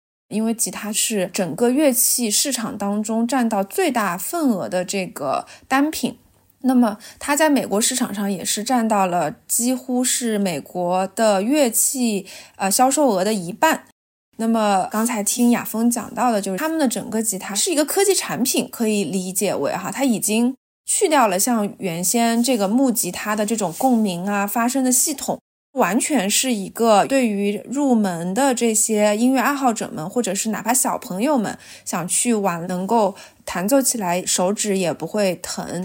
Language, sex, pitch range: Chinese, female, 200-255 Hz